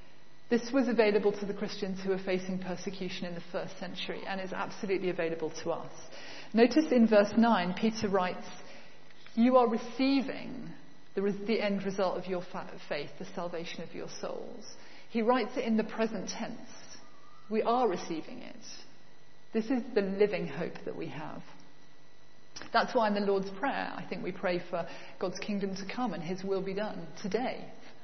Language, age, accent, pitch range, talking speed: English, 40-59, British, 185-230 Hz, 175 wpm